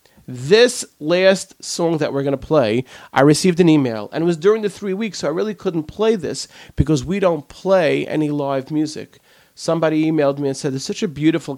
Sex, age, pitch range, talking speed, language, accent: male, 40-59, 130-180 Hz, 205 wpm, English, American